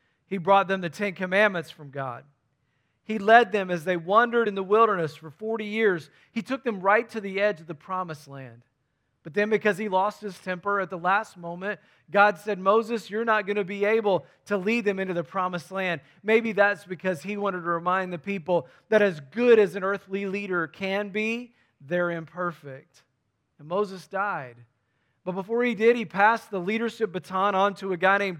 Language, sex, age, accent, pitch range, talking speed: English, male, 40-59, American, 170-215 Hz, 200 wpm